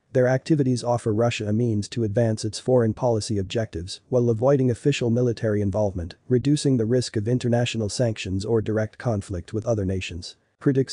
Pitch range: 105-125 Hz